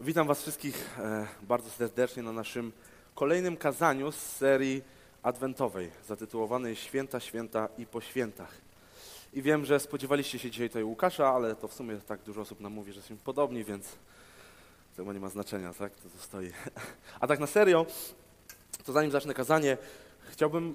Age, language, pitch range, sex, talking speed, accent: 20-39, Polish, 105-135 Hz, male, 160 wpm, native